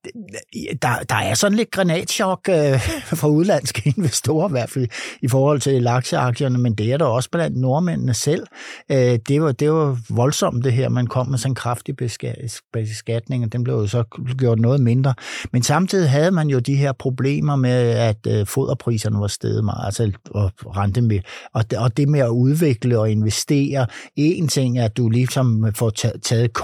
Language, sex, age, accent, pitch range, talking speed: Danish, male, 60-79, native, 110-130 Hz, 180 wpm